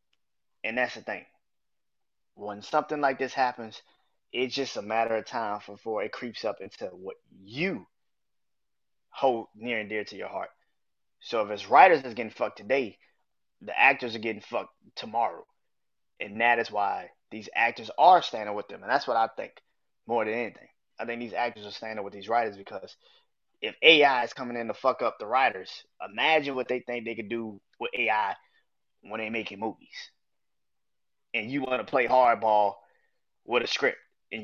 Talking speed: 180 wpm